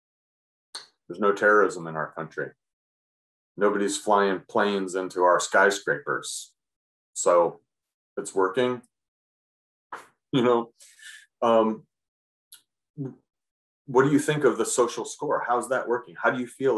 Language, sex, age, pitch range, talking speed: English, male, 30-49, 95-125 Hz, 120 wpm